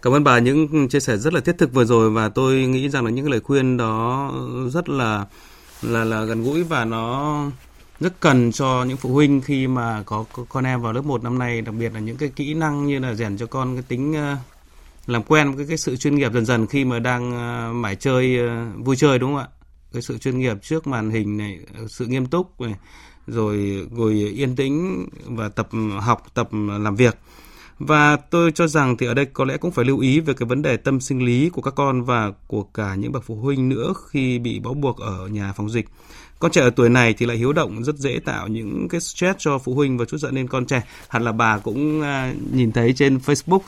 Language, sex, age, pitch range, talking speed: Vietnamese, male, 20-39, 115-145 Hz, 235 wpm